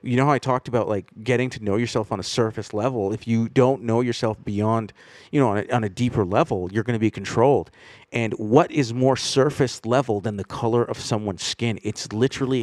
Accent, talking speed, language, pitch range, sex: American, 230 wpm, English, 110-135 Hz, male